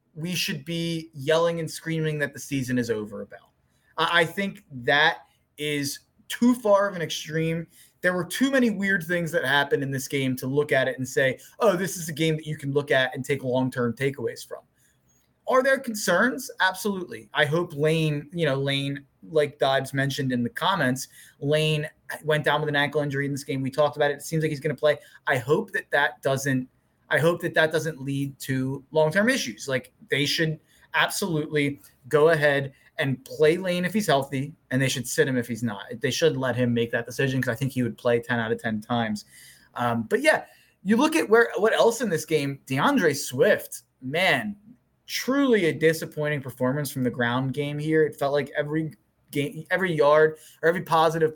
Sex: male